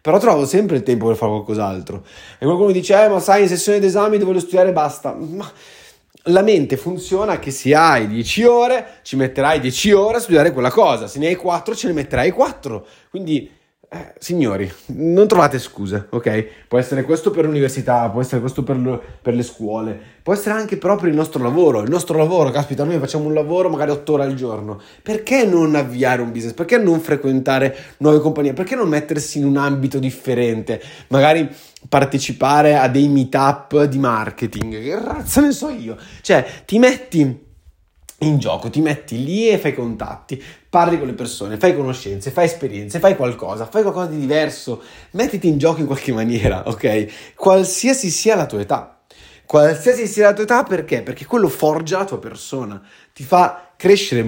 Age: 20-39